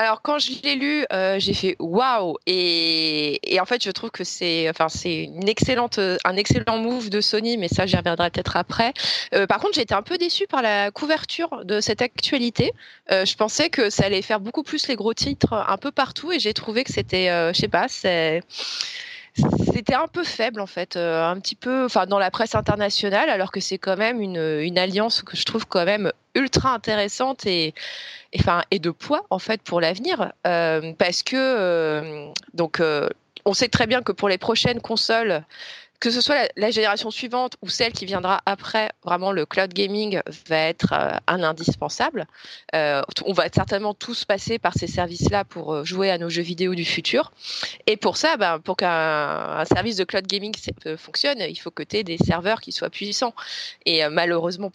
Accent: French